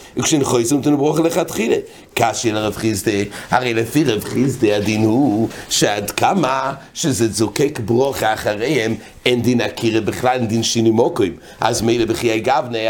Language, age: English, 60-79